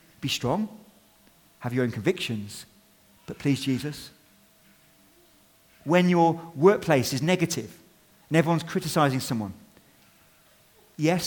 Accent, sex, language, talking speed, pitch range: British, male, English, 100 wpm, 115-160 Hz